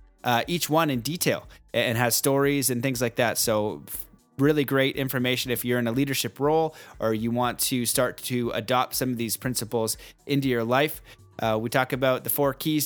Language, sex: English, male